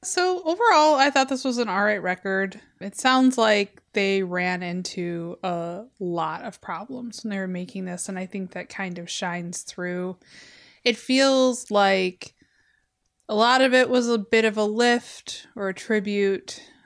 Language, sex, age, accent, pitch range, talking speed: English, female, 20-39, American, 180-240 Hz, 170 wpm